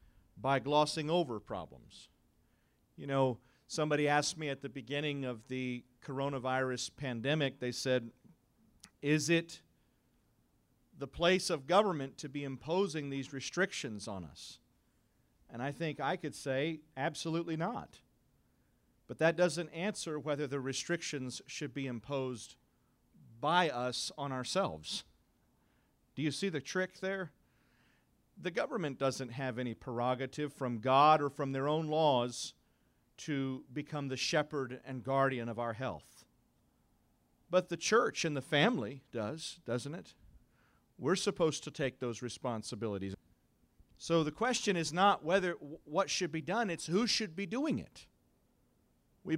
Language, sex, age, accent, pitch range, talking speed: English, male, 40-59, American, 125-165 Hz, 135 wpm